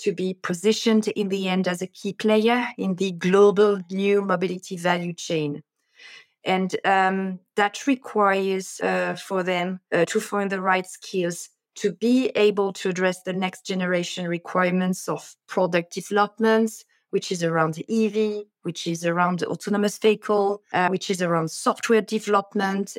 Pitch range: 185-225 Hz